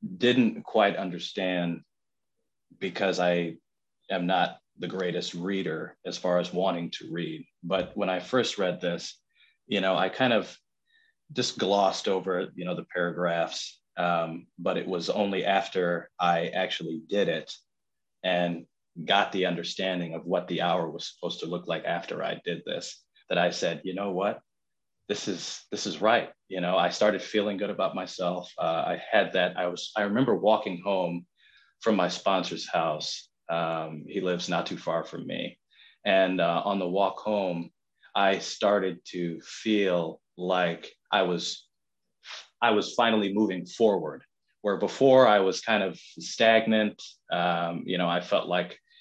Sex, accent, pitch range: male, American, 85-110 Hz